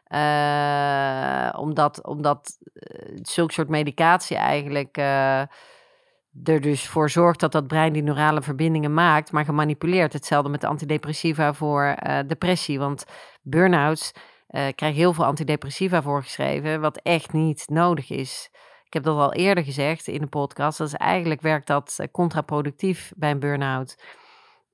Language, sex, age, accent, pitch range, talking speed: Dutch, female, 40-59, Dutch, 145-170 Hz, 140 wpm